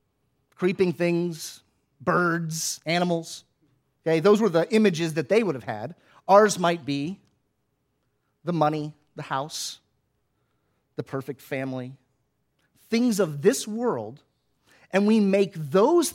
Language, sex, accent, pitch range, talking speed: English, male, American, 135-175 Hz, 120 wpm